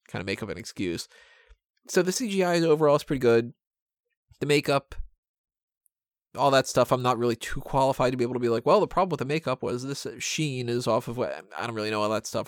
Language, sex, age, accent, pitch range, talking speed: English, male, 20-39, American, 115-150 Hz, 235 wpm